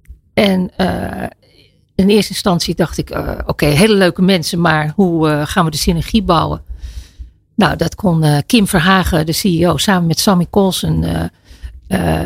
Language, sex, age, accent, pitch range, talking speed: Dutch, female, 50-69, Dutch, 160-205 Hz, 165 wpm